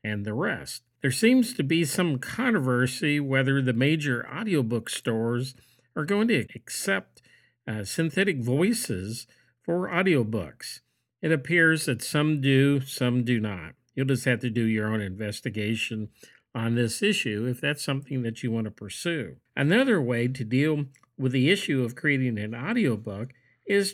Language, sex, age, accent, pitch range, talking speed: English, male, 50-69, American, 115-145 Hz, 155 wpm